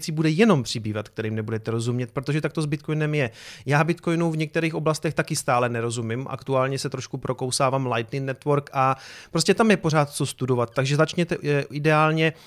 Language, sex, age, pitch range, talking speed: Czech, male, 30-49, 135-165 Hz, 175 wpm